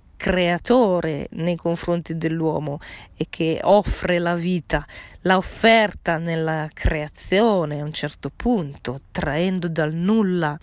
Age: 40-59